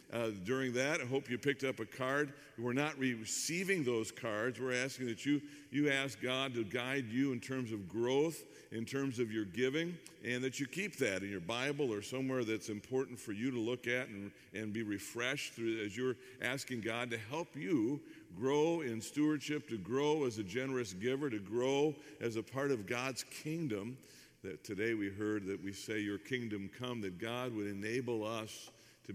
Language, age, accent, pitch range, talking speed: English, 50-69, American, 115-145 Hz, 200 wpm